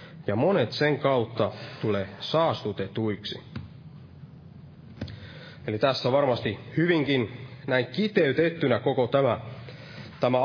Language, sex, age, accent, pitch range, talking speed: Finnish, male, 30-49, native, 110-150 Hz, 85 wpm